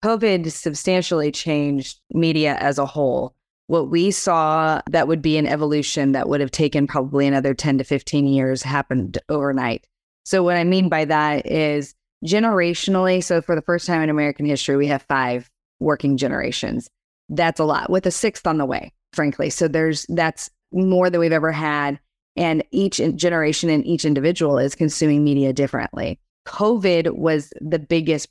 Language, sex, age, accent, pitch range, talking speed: English, female, 30-49, American, 145-175 Hz, 170 wpm